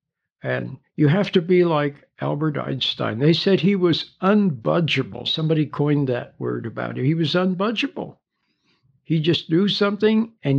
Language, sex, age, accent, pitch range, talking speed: English, male, 60-79, American, 135-190 Hz, 155 wpm